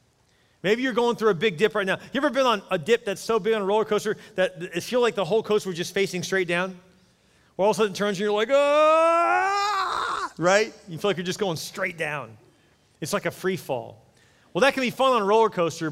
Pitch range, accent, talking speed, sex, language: 125-180 Hz, American, 260 wpm, male, English